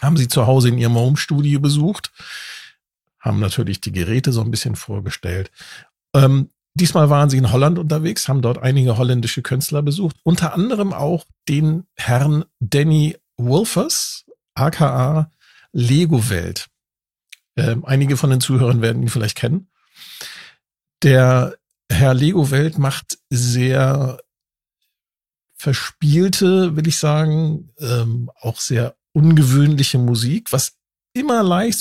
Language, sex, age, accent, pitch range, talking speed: German, male, 50-69, German, 120-155 Hz, 120 wpm